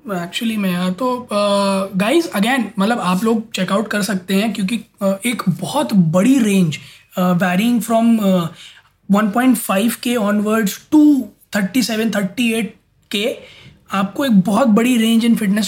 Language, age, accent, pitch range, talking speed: Hindi, 20-39, native, 200-240 Hz, 145 wpm